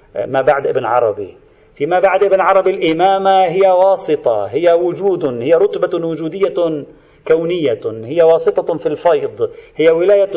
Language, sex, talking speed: Arabic, male, 135 wpm